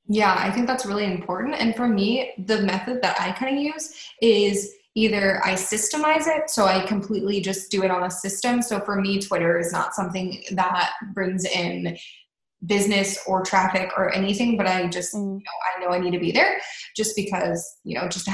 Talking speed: 200 wpm